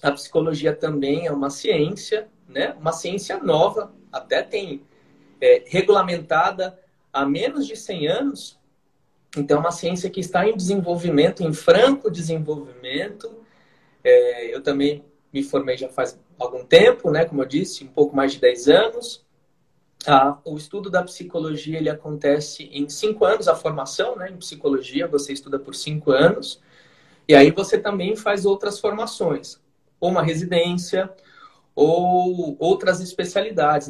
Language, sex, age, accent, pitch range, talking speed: Portuguese, male, 20-39, Brazilian, 145-195 Hz, 140 wpm